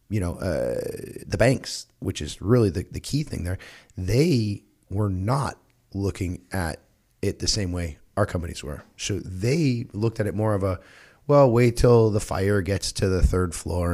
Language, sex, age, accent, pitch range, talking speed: English, male, 30-49, American, 90-110 Hz, 185 wpm